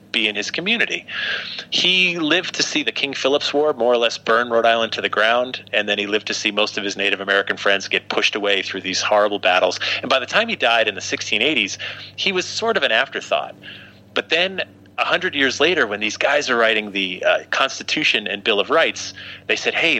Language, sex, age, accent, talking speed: English, male, 30-49, American, 225 wpm